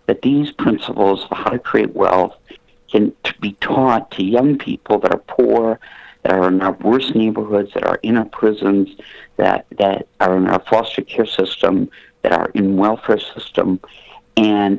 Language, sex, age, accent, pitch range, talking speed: English, male, 60-79, American, 100-115 Hz, 170 wpm